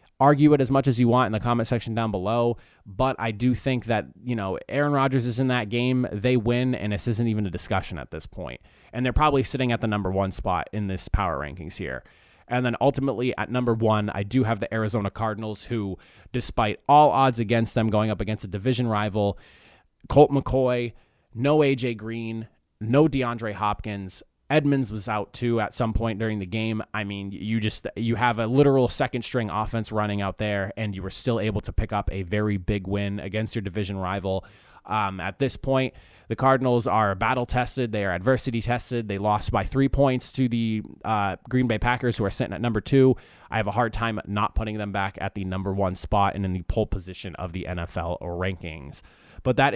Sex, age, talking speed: male, 20-39, 215 wpm